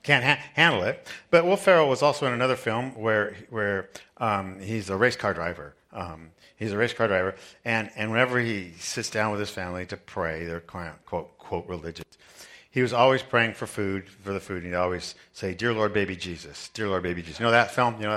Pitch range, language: 95-120 Hz, English